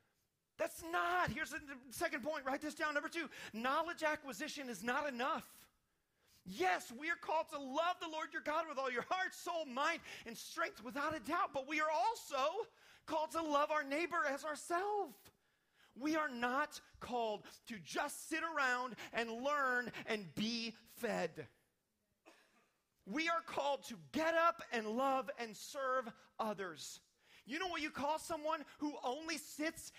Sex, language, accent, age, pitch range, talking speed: male, English, American, 30-49, 260-330 Hz, 160 wpm